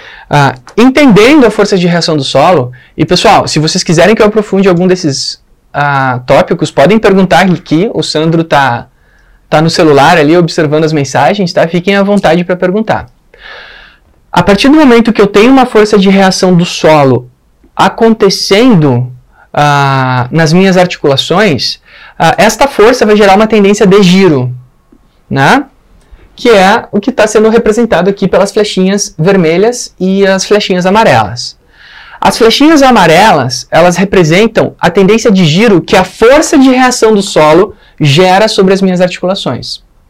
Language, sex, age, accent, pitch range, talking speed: Portuguese, male, 20-39, Brazilian, 160-220 Hz, 155 wpm